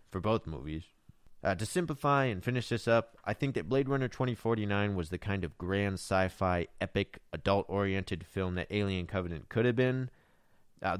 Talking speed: 180 wpm